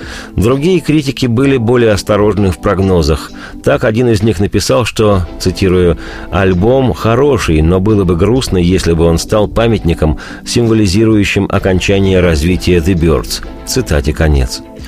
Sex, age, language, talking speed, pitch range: male, 40-59, Russian, 130 wpm, 90-120 Hz